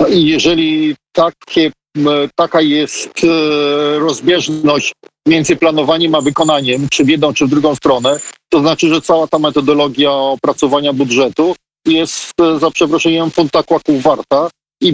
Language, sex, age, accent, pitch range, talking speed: Polish, male, 50-69, native, 145-165 Hz, 115 wpm